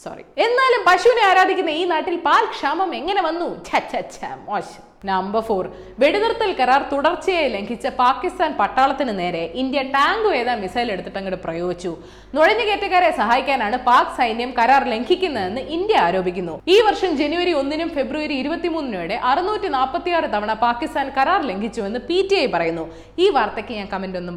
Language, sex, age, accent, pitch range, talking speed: Malayalam, female, 20-39, native, 225-365 Hz, 130 wpm